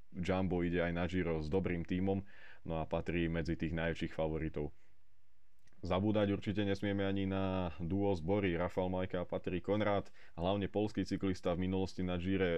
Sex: male